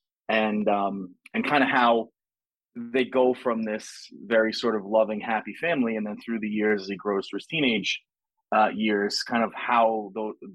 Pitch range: 100-120 Hz